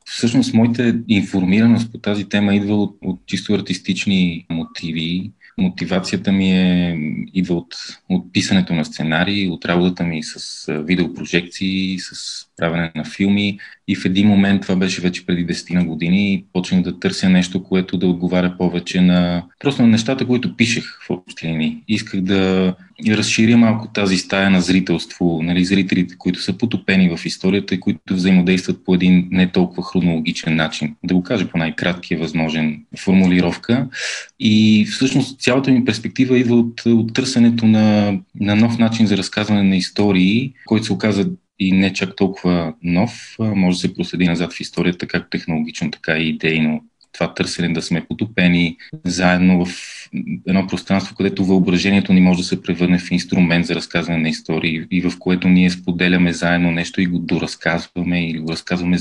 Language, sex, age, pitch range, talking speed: Bulgarian, male, 20-39, 90-105 Hz, 165 wpm